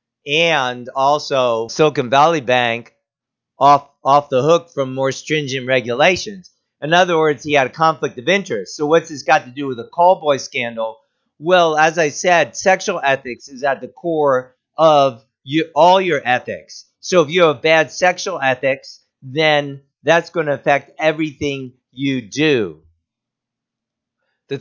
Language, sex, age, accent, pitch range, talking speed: English, male, 50-69, American, 120-160 Hz, 155 wpm